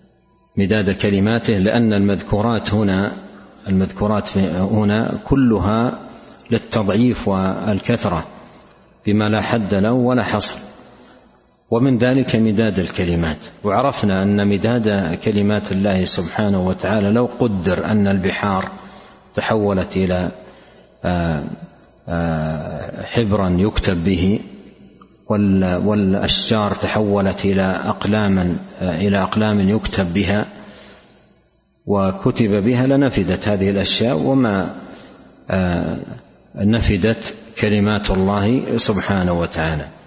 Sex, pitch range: male, 95-110 Hz